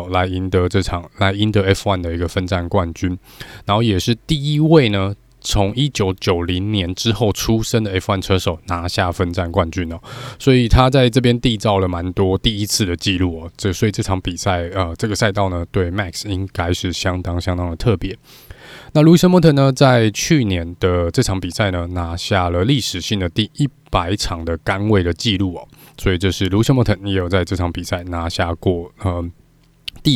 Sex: male